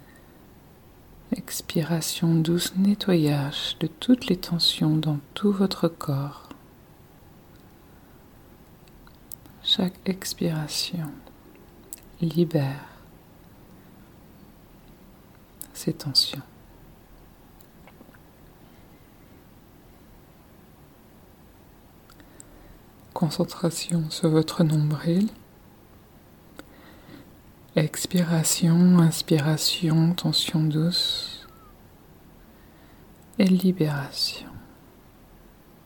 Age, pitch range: 50-69, 150-180 Hz